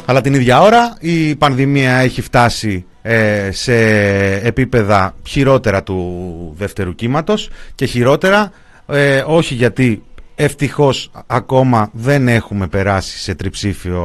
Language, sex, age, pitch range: Greek, male, 30-49, 100-135 Hz